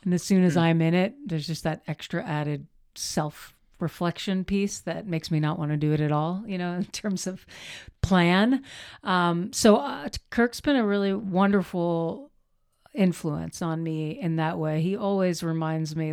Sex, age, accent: female, 40-59, American